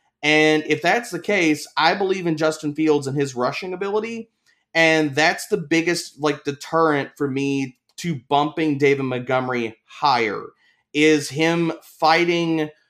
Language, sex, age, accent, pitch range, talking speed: English, male, 30-49, American, 140-185 Hz, 140 wpm